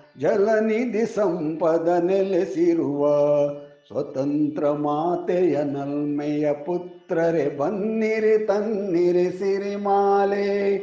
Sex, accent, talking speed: male, native, 55 wpm